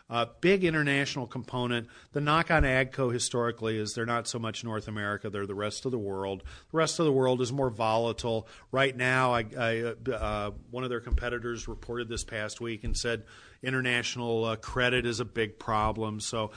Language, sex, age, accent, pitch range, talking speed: English, male, 40-59, American, 110-135 Hz, 185 wpm